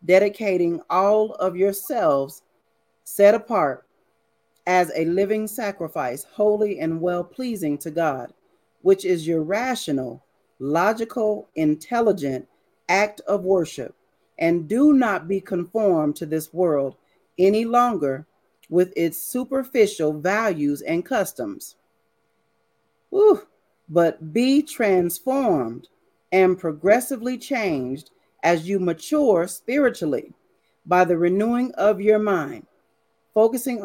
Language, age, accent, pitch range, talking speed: English, 40-59, American, 165-230 Hz, 100 wpm